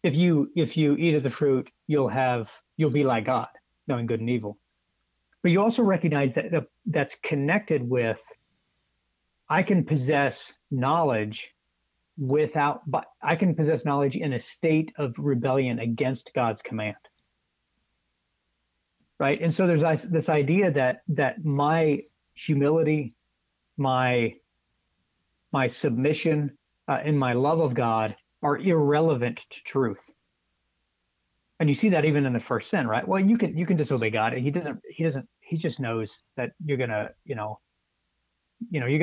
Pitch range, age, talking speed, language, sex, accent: 90-155 Hz, 40-59, 155 wpm, English, male, American